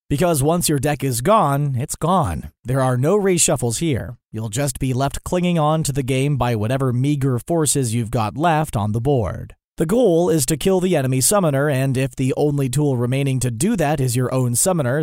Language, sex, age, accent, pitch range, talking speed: English, male, 40-59, American, 125-170 Hz, 210 wpm